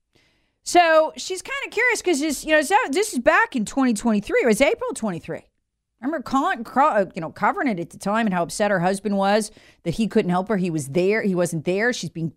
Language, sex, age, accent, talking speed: English, female, 40-59, American, 220 wpm